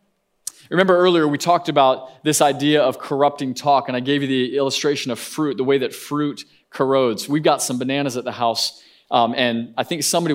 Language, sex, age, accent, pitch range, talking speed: English, male, 20-39, American, 135-175 Hz, 205 wpm